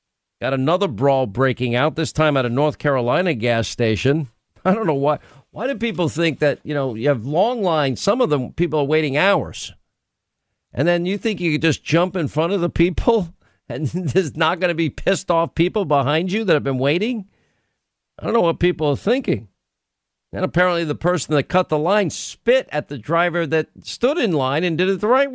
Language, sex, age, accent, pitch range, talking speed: English, male, 50-69, American, 135-175 Hz, 215 wpm